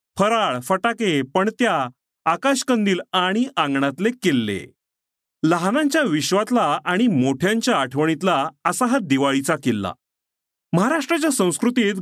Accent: native